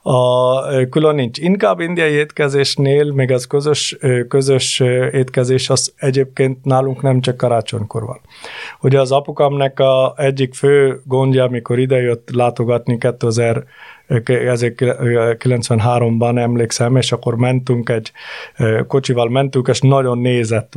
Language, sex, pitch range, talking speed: Hungarian, male, 120-135 Hz, 115 wpm